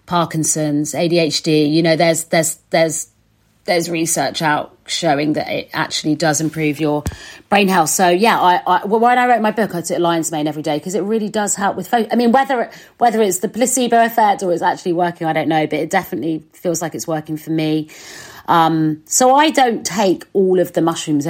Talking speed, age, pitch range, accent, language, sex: 210 wpm, 40-59, 160-190 Hz, British, English, female